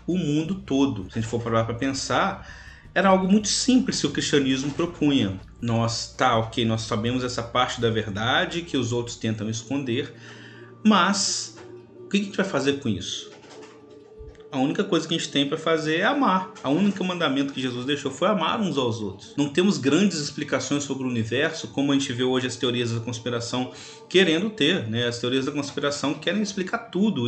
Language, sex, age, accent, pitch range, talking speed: Portuguese, male, 30-49, Brazilian, 120-160 Hz, 195 wpm